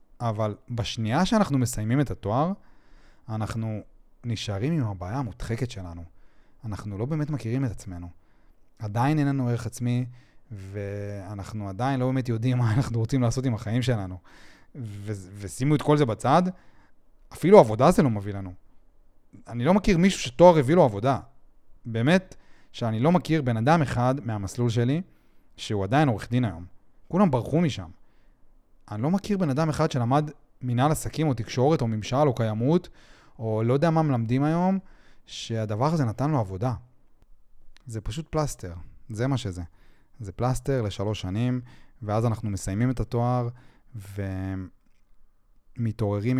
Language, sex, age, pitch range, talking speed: Hebrew, male, 30-49, 100-130 Hz, 145 wpm